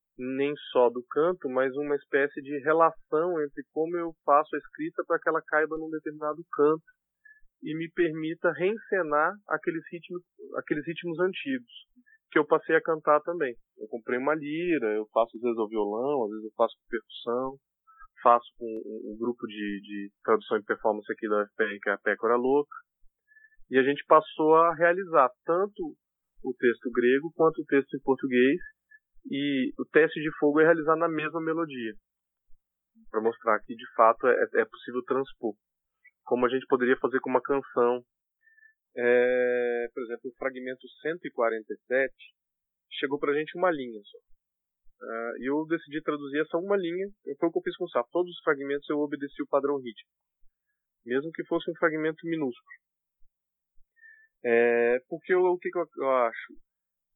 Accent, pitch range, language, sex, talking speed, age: Brazilian, 125-175 Hz, Portuguese, male, 170 wpm, 20-39